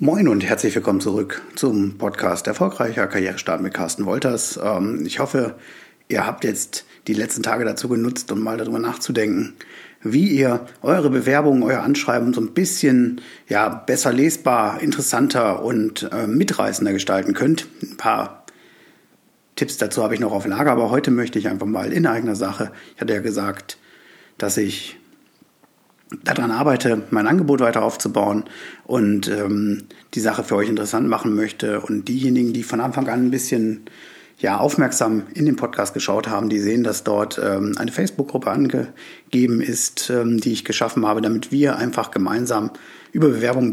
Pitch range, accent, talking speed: 110-135 Hz, German, 160 wpm